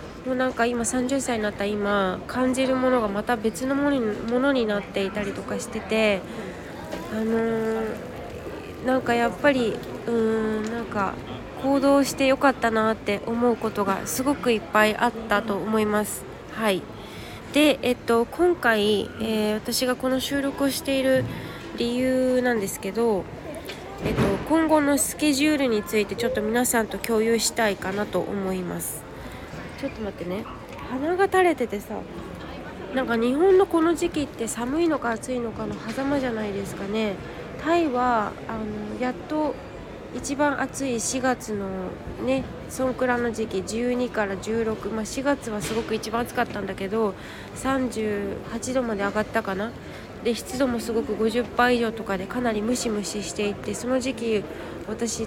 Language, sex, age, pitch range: Japanese, female, 20-39, 210-260 Hz